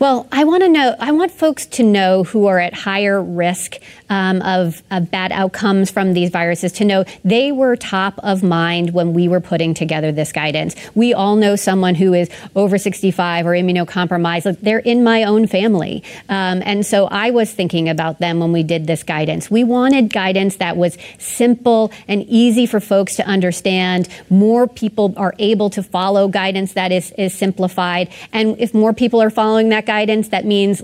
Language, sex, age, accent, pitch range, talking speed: English, female, 30-49, American, 180-215 Hz, 190 wpm